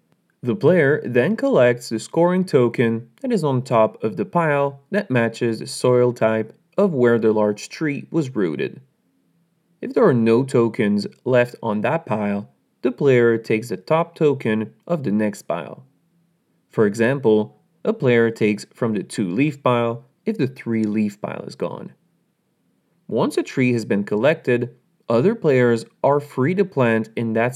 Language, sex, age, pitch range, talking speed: English, male, 30-49, 110-160 Hz, 160 wpm